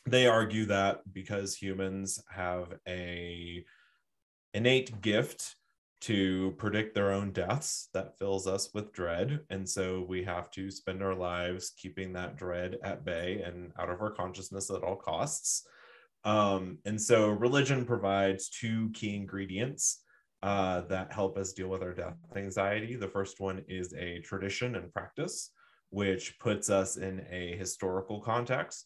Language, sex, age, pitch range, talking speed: English, male, 20-39, 90-105 Hz, 150 wpm